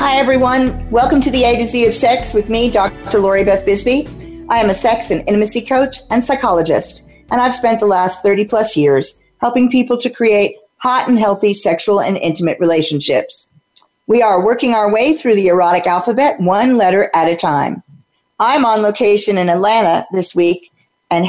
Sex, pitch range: female, 180-245 Hz